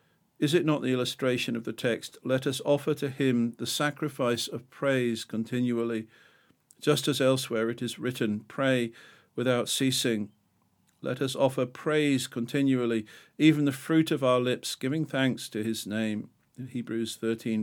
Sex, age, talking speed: male, 50-69, 155 wpm